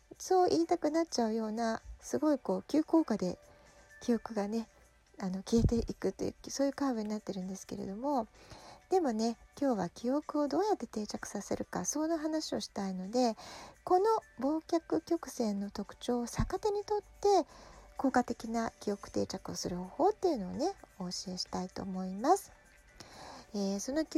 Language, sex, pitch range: Japanese, female, 220-330 Hz